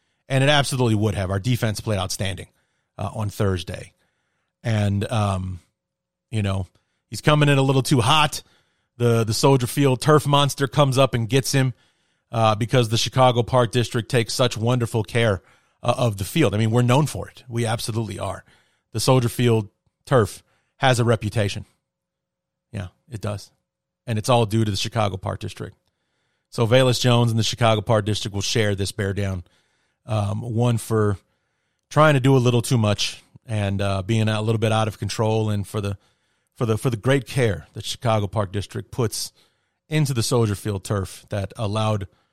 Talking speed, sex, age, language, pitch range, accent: 185 wpm, male, 30-49, English, 100-125 Hz, American